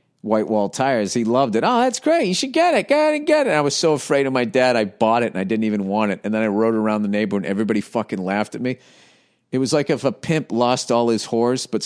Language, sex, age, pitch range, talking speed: English, male, 40-59, 110-140 Hz, 300 wpm